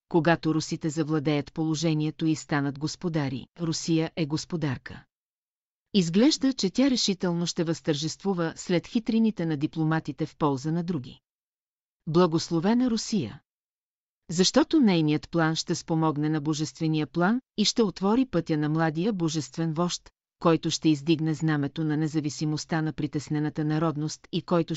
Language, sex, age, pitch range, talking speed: Bulgarian, female, 40-59, 155-180 Hz, 130 wpm